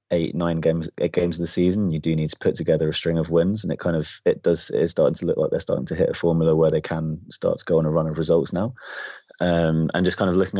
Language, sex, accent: English, male, British